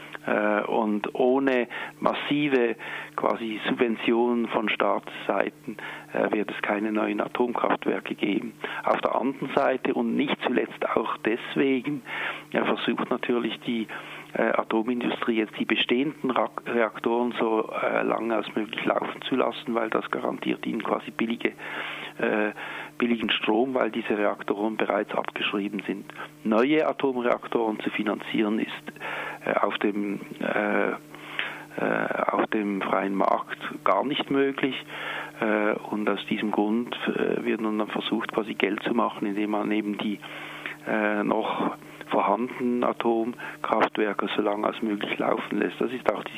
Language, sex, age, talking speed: German, male, 50-69, 120 wpm